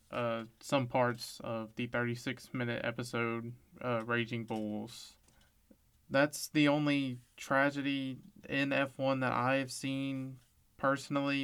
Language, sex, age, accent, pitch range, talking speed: English, male, 20-39, American, 120-140 Hz, 110 wpm